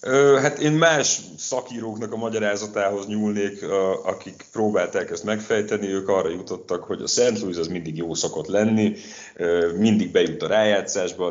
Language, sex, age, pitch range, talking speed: Hungarian, male, 30-49, 80-105 Hz, 145 wpm